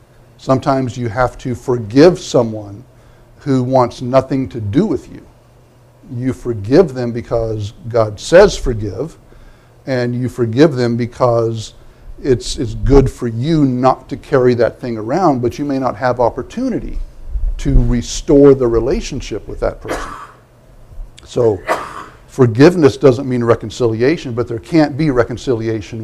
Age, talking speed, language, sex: 60-79, 135 wpm, English, male